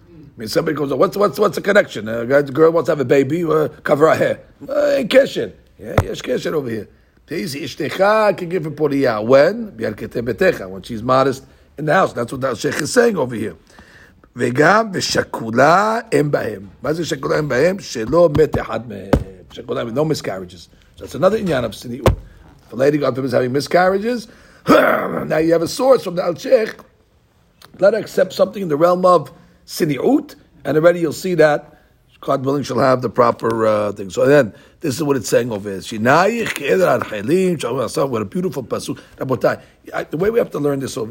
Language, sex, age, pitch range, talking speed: English, male, 50-69, 115-180 Hz, 175 wpm